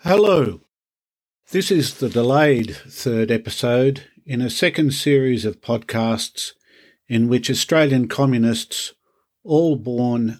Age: 50-69